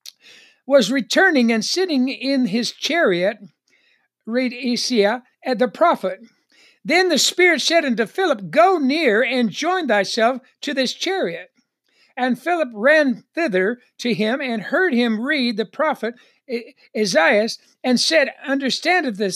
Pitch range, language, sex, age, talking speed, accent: 220-285 Hz, English, male, 60-79, 130 wpm, American